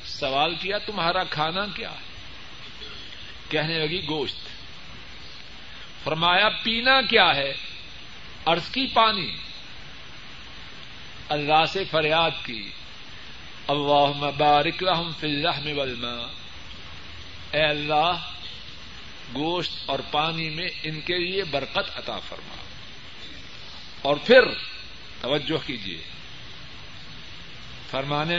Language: Urdu